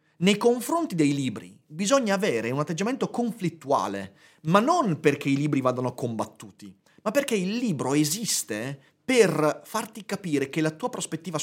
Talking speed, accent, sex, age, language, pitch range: 145 wpm, native, male, 30-49, Italian, 145-210 Hz